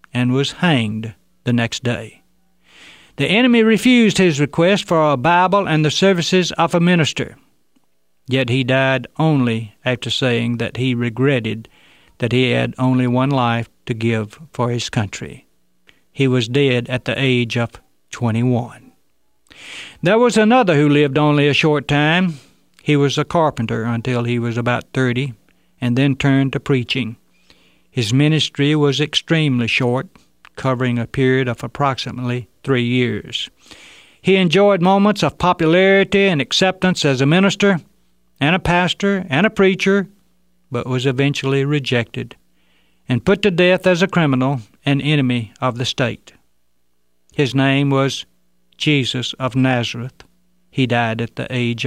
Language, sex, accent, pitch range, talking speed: English, male, American, 115-155 Hz, 145 wpm